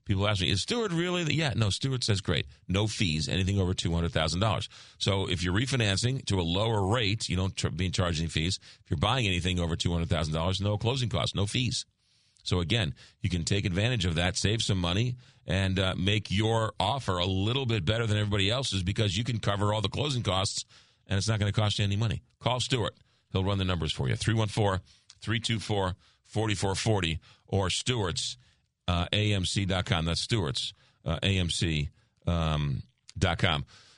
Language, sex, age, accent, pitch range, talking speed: English, male, 40-59, American, 95-120 Hz, 175 wpm